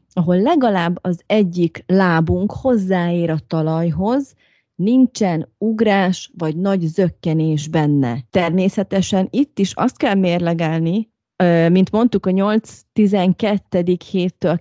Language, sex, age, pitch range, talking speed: Hungarian, female, 30-49, 170-205 Hz, 105 wpm